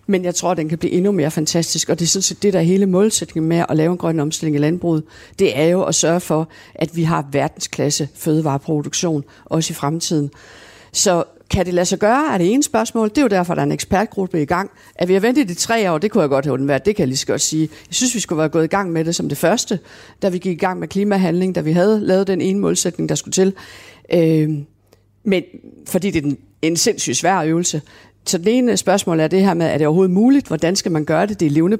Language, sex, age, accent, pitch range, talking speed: Danish, female, 60-79, native, 155-190 Hz, 265 wpm